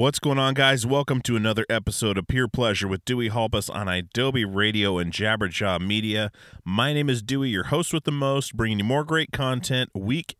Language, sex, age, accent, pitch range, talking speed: English, male, 30-49, American, 105-135 Hz, 200 wpm